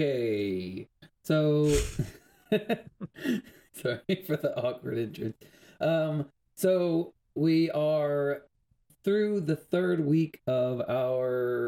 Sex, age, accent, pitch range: male, 30-49, American, 120-150 Hz